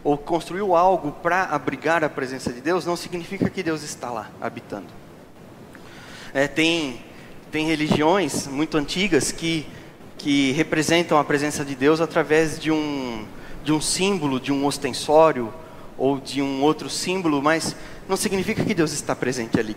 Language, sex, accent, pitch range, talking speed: Portuguese, male, Brazilian, 150-185 Hz, 150 wpm